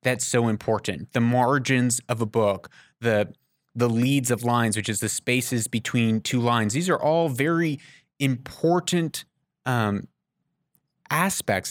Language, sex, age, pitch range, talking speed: English, male, 30-49, 115-155 Hz, 140 wpm